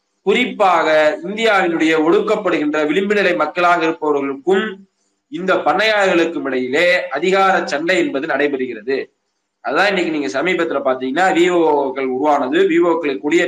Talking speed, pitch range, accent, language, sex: 100 wpm, 150-200 Hz, native, Tamil, male